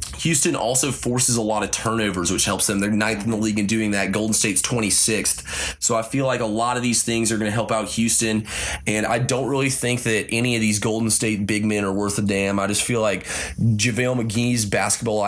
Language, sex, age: English, male, 20-39